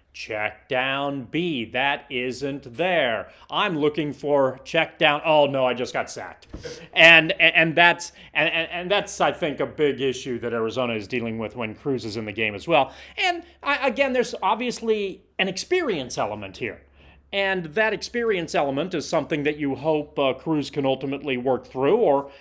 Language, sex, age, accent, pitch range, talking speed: English, male, 30-49, American, 130-175 Hz, 170 wpm